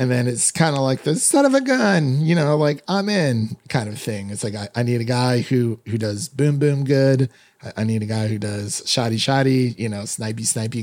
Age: 30-49